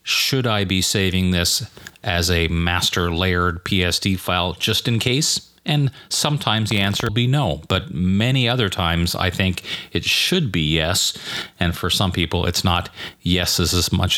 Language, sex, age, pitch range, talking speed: English, male, 40-59, 90-105 Hz, 170 wpm